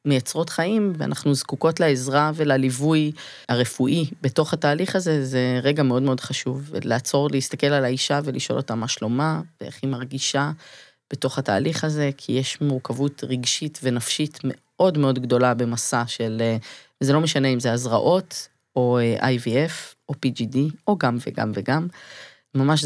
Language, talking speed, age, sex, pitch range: Hebrew, 140 wpm, 20-39, female, 125-145 Hz